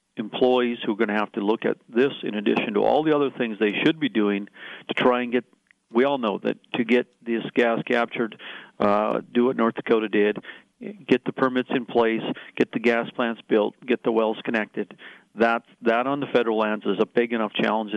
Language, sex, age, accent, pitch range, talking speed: English, male, 50-69, American, 105-120 Hz, 215 wpm